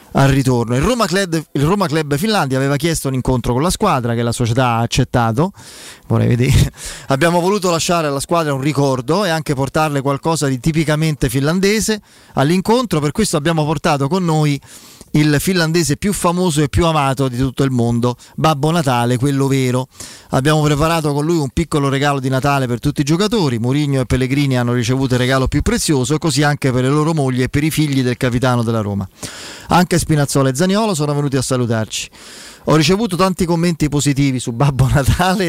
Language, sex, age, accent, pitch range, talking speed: Italian, male, 30-49, native, 135-175 Hz, 185 wpm